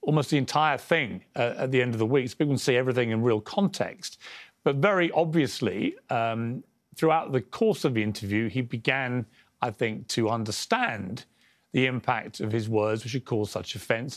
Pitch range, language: 115-155 Hz, English